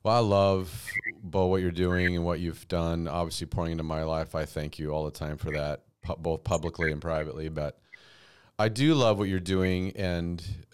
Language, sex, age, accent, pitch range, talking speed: English, male, 40-59, American, 85-100 Hz, 200 wpm